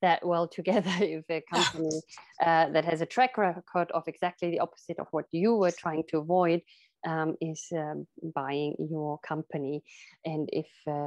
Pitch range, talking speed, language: 155-190 Hz, 170 wpm, English